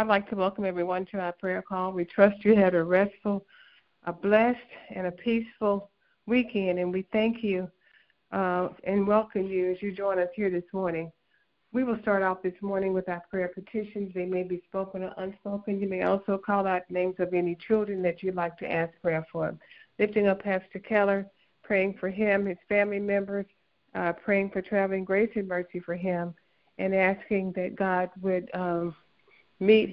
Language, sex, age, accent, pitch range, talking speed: English, female, 60-79, American, 180-205 Hz, 190 wpm